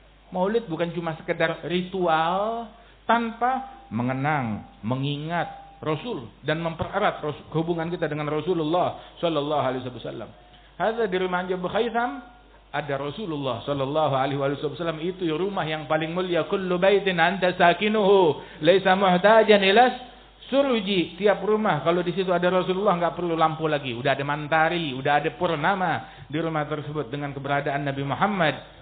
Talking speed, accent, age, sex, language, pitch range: 115 wpm, native, 50-69, male, Indonesian, 150-195 Hz